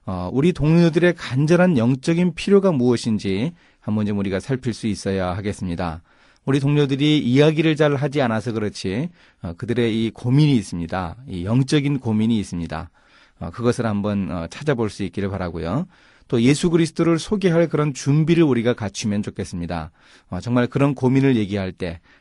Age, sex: 30-49, male